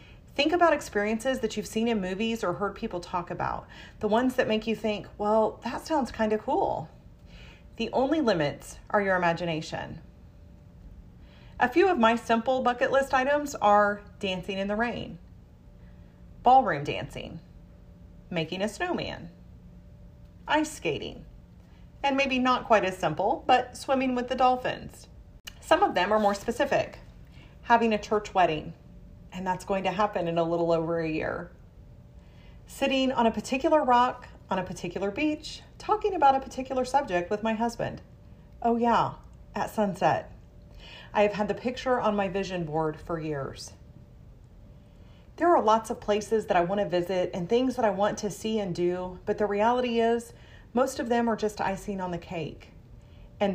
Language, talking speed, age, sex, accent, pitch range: English, 165 wpm, 30-49, female, American, 175-245 Hz